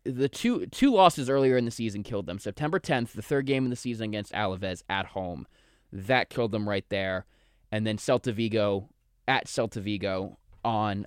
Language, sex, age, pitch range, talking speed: English, male, 20-39, 100-125 Hz, 190 wpm